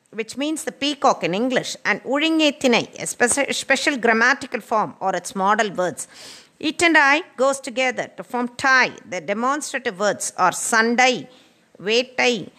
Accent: native